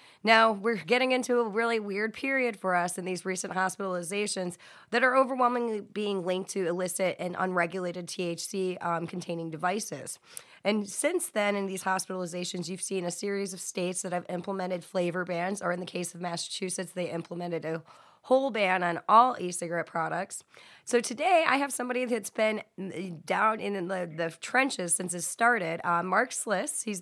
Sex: female